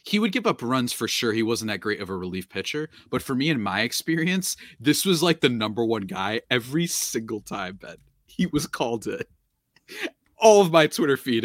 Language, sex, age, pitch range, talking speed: English, male, 30-49, 105-160 Hz, 215 wpm